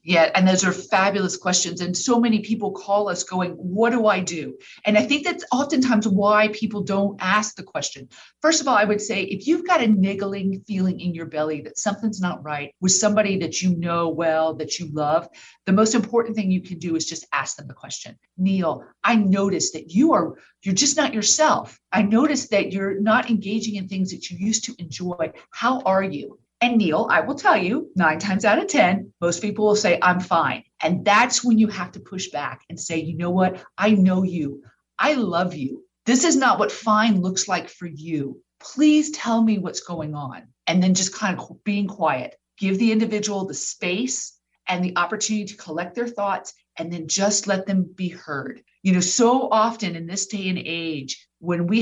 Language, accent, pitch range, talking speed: English, American, 175-215 Hz, 210 wpm